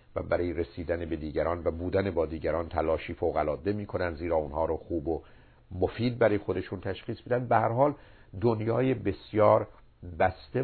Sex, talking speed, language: male, 160 wpm, Persian